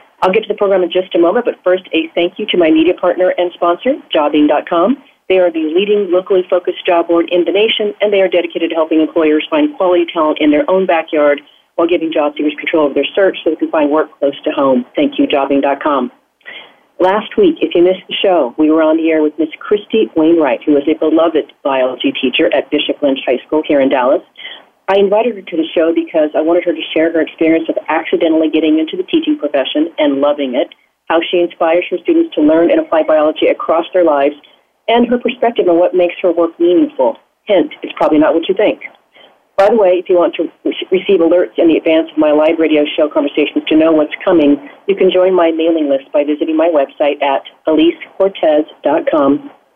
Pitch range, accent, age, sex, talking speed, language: 155-210 Hz, American, 40-59, female, 220 wpm, English